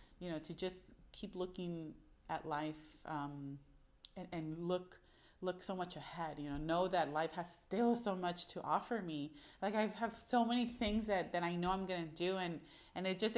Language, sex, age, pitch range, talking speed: English, female, 30-49, 150-195 Hz, 205 wpm